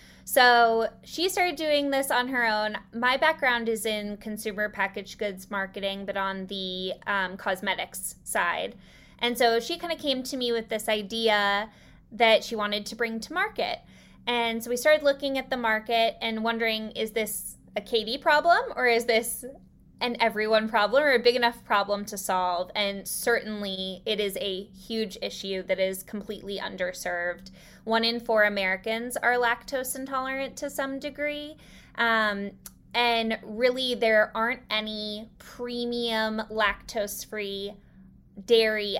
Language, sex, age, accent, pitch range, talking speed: English, female, 20-39, American, 200-240 Hz, 150 wpm